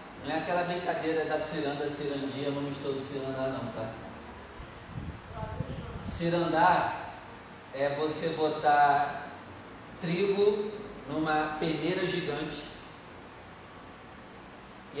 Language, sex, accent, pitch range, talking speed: Portuguese, male, Brazilian, 145-180 Hz, 85 wpm